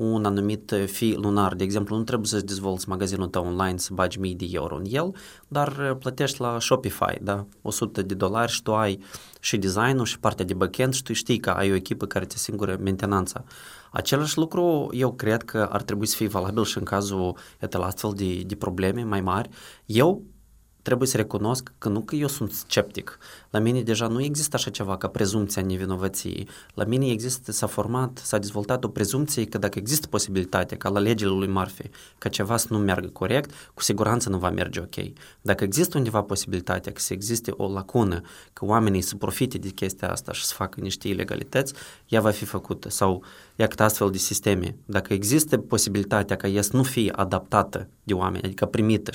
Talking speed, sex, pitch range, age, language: 195 wpm, male, 95-120 Hz, 20-39, Romanian